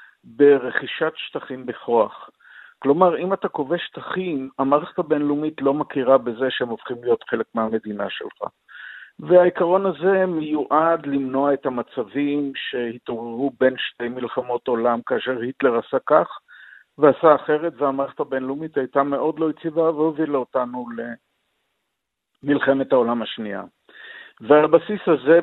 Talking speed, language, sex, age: 115 wpm, Hebrew, male, 50-69